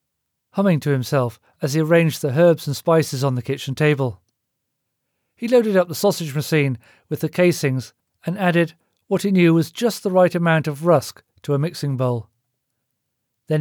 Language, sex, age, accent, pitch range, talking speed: English, male, 40-59, British, 135-175 Hz, 175 wpm